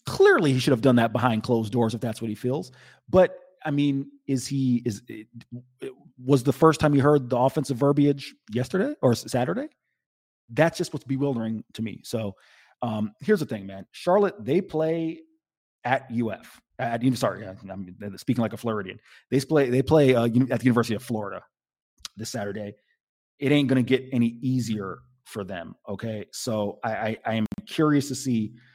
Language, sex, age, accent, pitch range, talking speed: English, male, 30-49, American, 115-150 Hz, 180 wpm